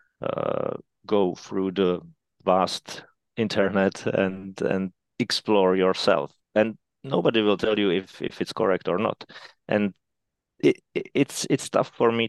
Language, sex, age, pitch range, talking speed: English, male, 30-49, 95-110 Hz, 130 wpm